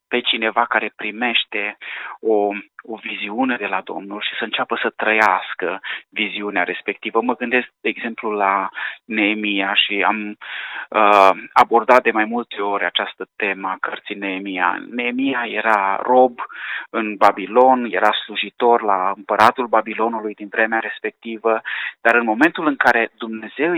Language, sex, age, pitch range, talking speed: Romanian, male, 30-49, 105-125 Hz, 135 wpm